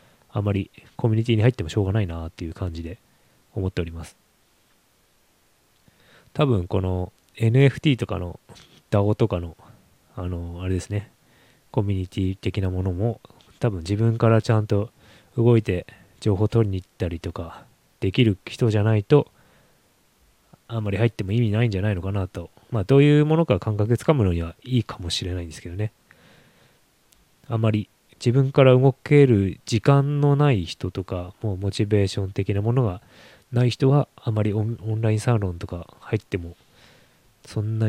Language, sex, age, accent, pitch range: Japanese, male, 20-39, native, 95-115 Hz